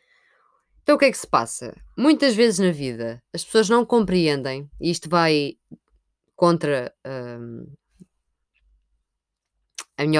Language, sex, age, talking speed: Portuguese, female, 20-39, 130 wpm